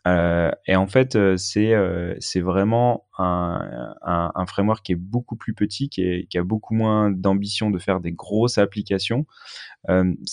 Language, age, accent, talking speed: French, 20-39, French, 170 wpm